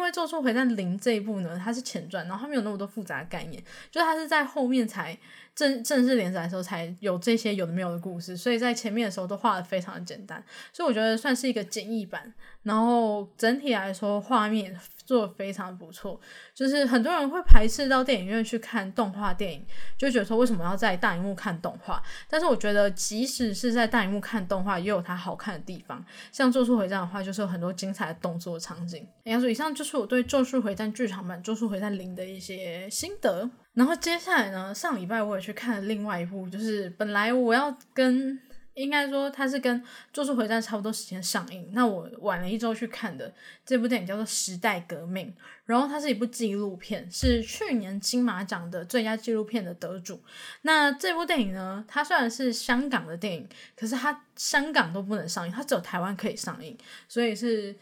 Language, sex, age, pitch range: Chinese, female, 10-29, 195-250 Hz